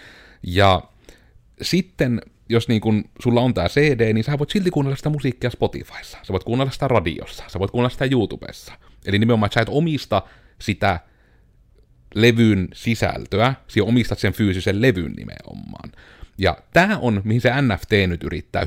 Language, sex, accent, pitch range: Finnish, male, native, 95-120 Hz